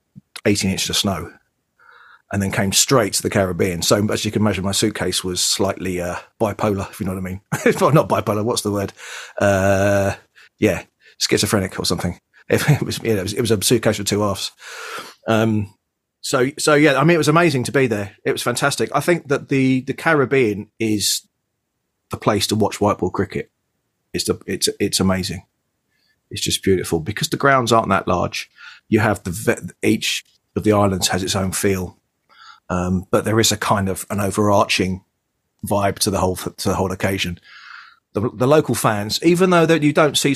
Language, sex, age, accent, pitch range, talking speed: English, male, 30-49, British, 95-120 Hz, 200 wpm